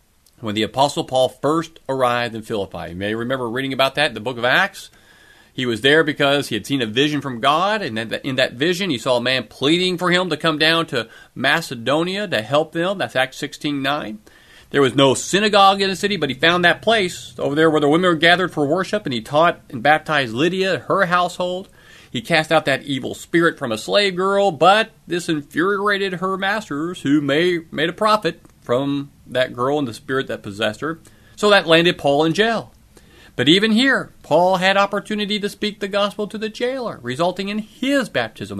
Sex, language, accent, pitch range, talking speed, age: male, English, American, 130-195 Hz, 205 wpm, 40-59